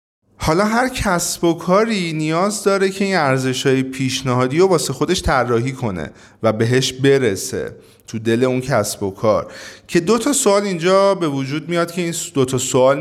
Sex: male